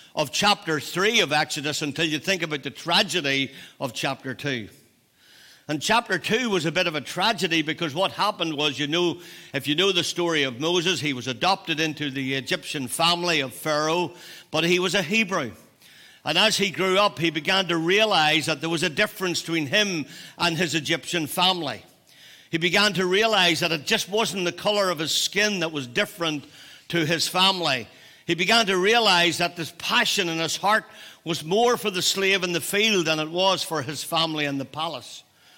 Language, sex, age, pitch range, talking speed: English, male, 60-79, 160-200 Hz, 195 wpm